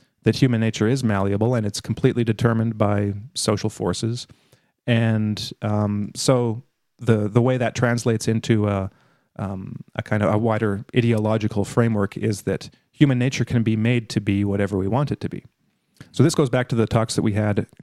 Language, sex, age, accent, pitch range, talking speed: English, male, 30-49, American, 105-125 Hz, 185 wpm